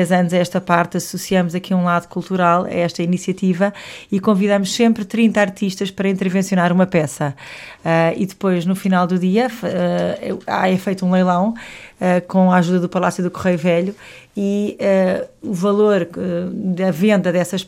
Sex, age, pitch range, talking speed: female, 20-39, 175-195 Hz, 170 wpm